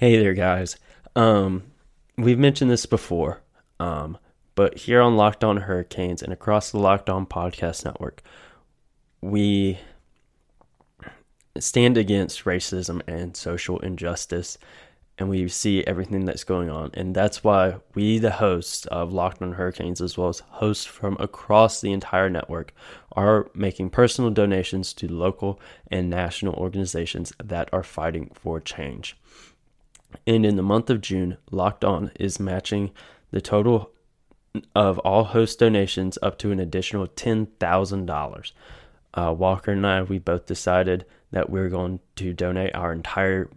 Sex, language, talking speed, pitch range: male, English, 145 wpm, 85-100 Hz